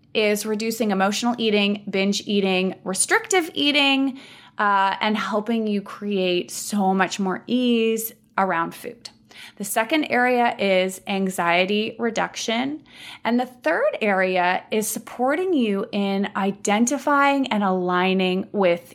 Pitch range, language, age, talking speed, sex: 190-250 Hz, English, 20-39, 115 wpm, female